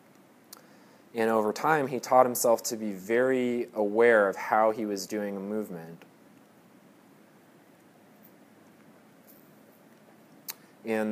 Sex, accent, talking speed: male, American, 95 wpm